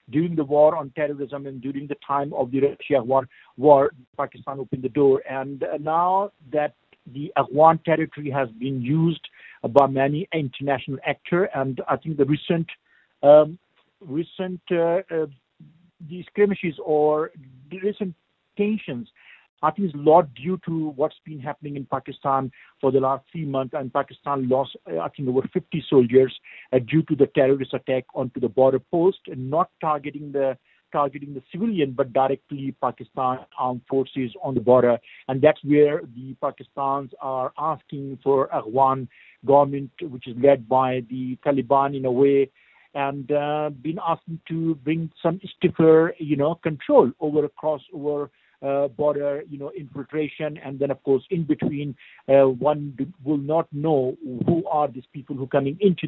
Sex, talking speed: male, 165 wpm